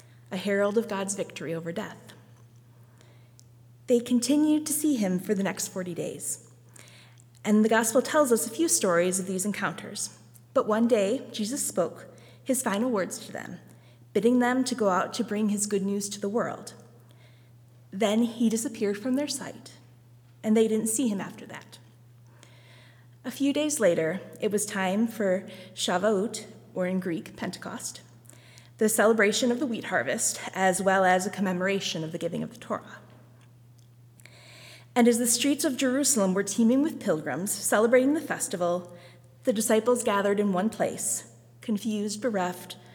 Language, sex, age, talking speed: English, female, 30-49, 160 wpm